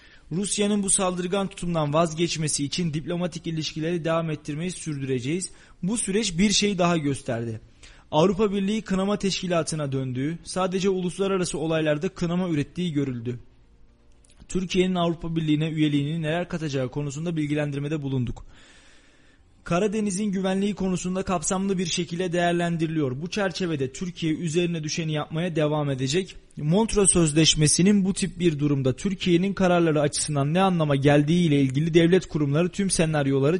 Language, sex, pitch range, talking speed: Turkish, male, 155-190 Hz, 125 wpm